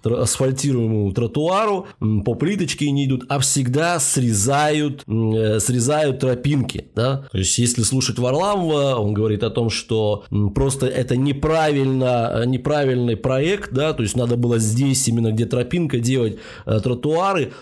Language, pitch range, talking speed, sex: Russian, 115-155 Hz, 130 wpm, male